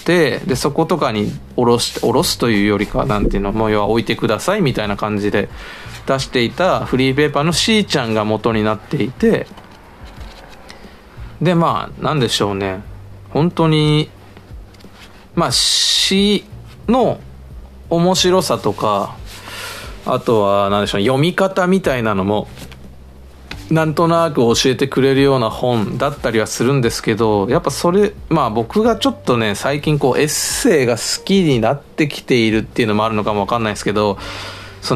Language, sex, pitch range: Japanese, male, 105-165 Hz